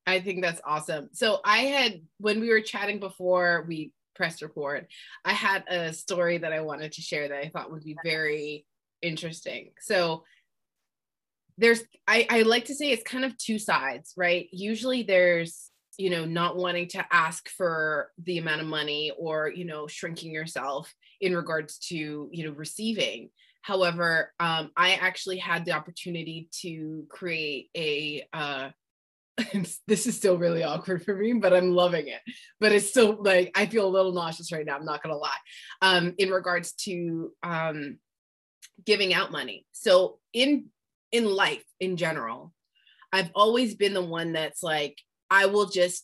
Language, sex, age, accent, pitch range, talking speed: English, female, 20-39, American, 160-200 Hz, 170 wpm